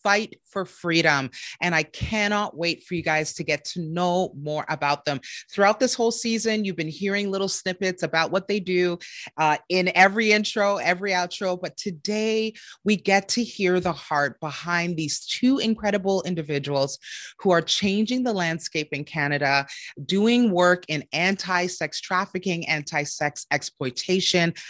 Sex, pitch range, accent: female, 155-205 Hz, American